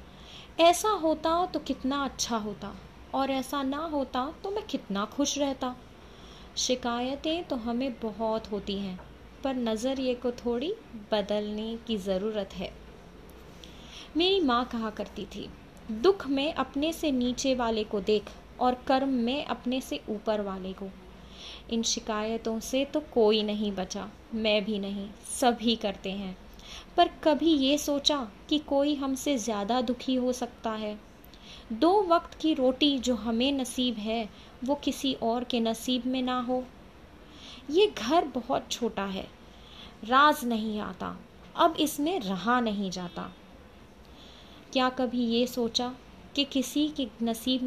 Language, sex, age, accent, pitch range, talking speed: English, female, 20-39, Indian, 215-280 Hz, 140 wpm